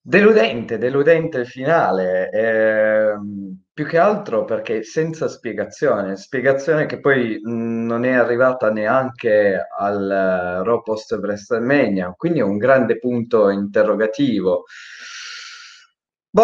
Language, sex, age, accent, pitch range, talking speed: Italian, male, 20-39, native, 105-140 Hz, 105 wpm